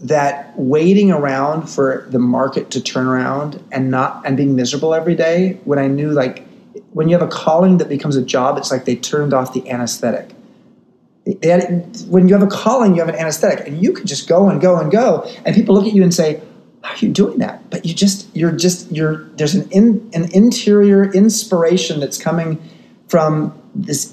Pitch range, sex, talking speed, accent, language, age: 140-185 Hz, male, 210 wpm, American, English, 30-49